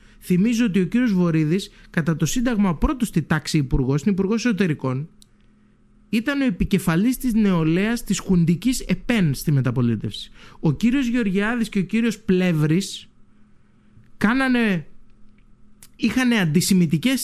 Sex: male